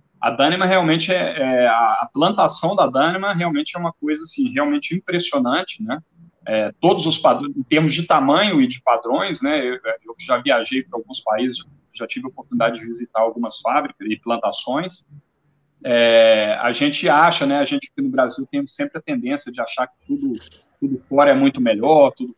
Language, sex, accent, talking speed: Portuguese, male, Brazilian, 190 wpm